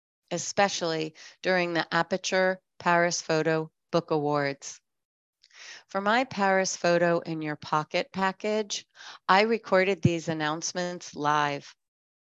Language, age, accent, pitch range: English, 40-59, American, 155-190 Hz